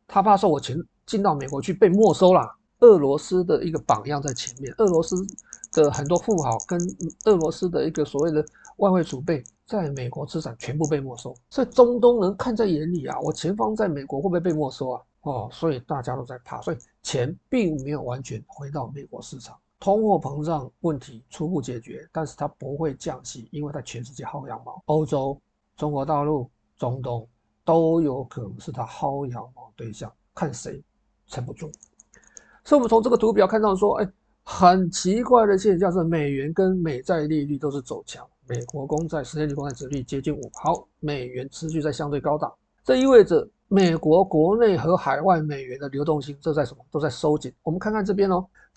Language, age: Chinese, 50-69